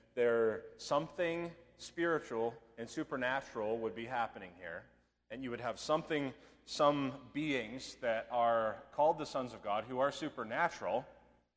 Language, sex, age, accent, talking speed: English, male, 30-49, American, 135 wpm